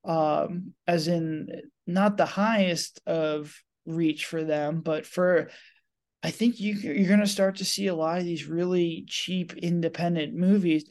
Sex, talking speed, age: male, 150 wpm, 20-39